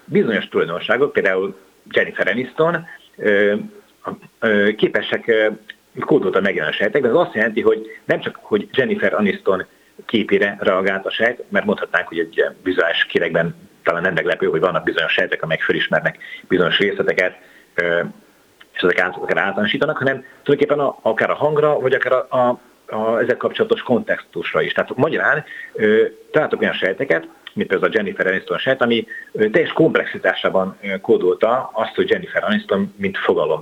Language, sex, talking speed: Hungarian, male, 145 wpm